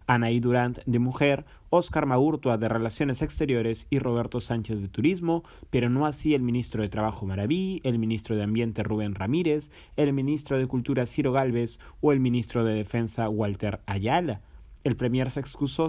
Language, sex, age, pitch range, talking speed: Spanish, male, 30-49, 120-150 Hz, 170 wpm